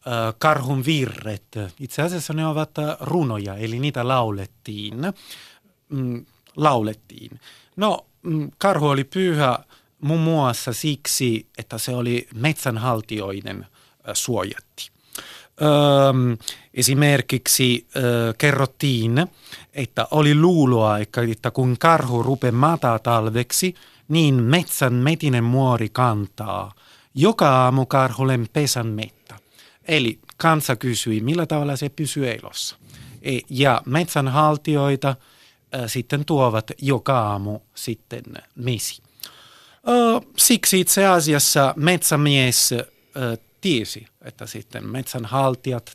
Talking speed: 95 wpm